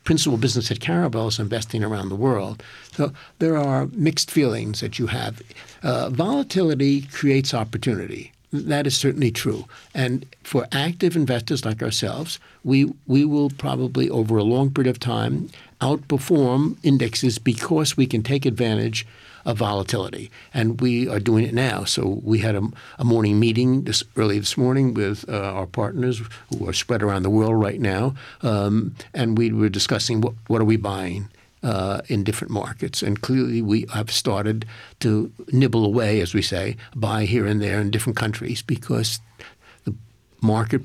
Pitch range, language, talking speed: 110-130 Hz, English, 165 wpm